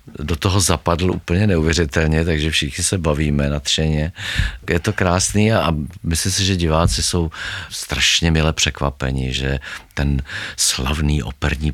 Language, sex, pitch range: Czech, male, 70-85 Hz